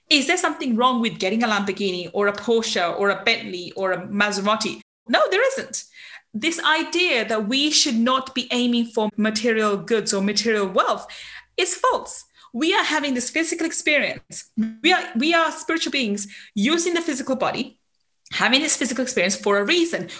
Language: English